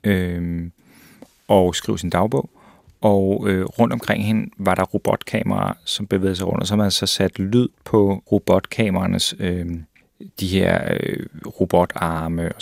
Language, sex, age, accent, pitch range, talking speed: Danish, male, 30-49, native, 95-110 Hz, 145 wpm